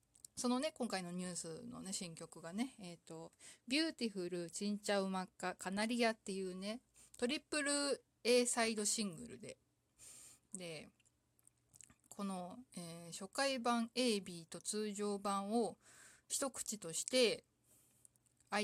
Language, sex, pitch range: Japanese, female, 185-255 Hz